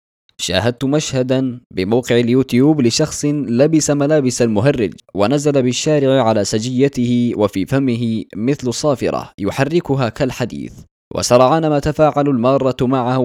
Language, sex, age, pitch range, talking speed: Arabic, male, 20-39, 115-145 Hz, 105 wpm